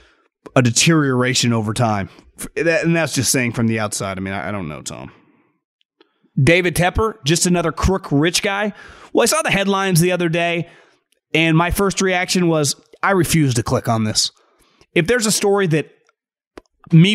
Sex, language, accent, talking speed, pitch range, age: male, English, American, 170 wpm, 135-175 Hz, 30-49